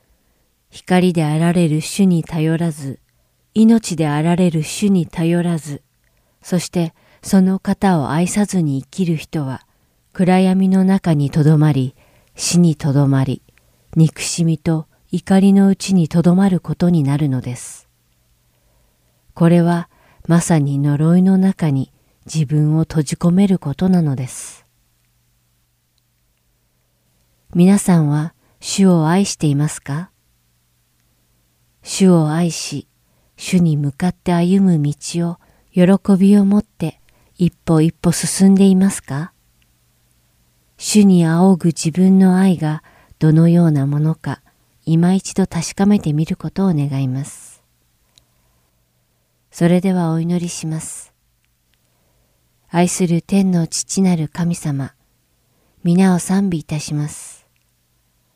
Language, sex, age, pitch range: English, female, 40-59, 110-180 Hz